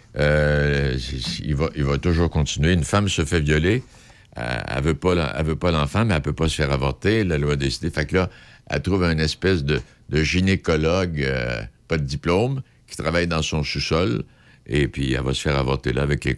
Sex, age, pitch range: male, 60-79, 70-100 Hz